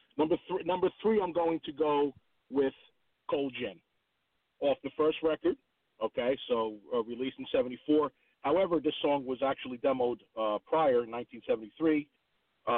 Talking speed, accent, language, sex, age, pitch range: 145 wpm, American, English, male, 40-59, 120-155 Hz